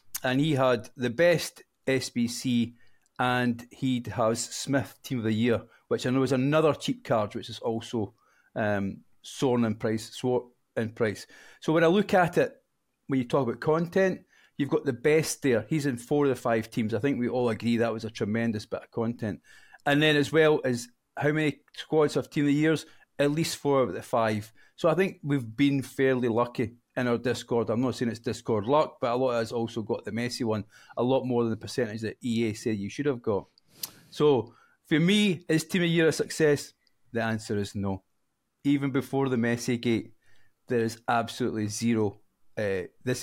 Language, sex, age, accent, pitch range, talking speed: English, male, 40-59, British, 115-145 Hz, 205 wpm